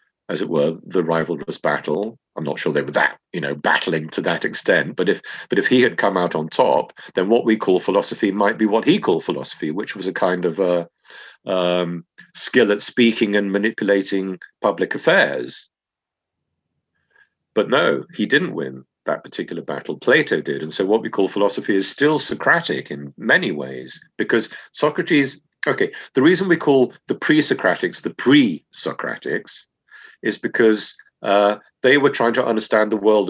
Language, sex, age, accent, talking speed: English, male, 50-69, British, 175 wpm